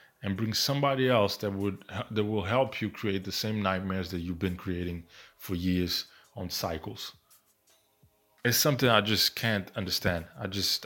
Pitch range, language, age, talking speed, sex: 95-115 Hz, English, 20-39, 165 wpm, male